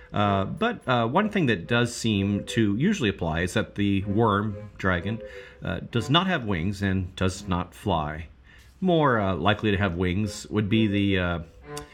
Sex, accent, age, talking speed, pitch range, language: male, American, 40-59, 175 wpm, 95-115 Hz, English